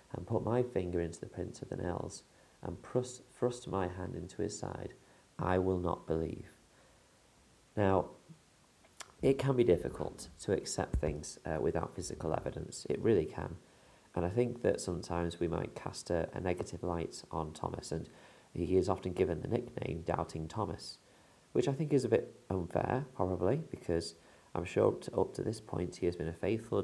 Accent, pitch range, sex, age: British, 85-115 Hz, male, 30-49